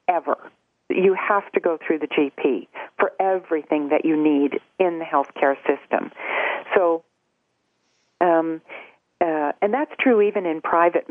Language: English